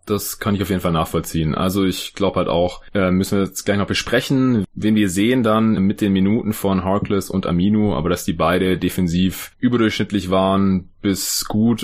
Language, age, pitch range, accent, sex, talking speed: German, 20-39, 90-110 Hz, German, male, 200 wpm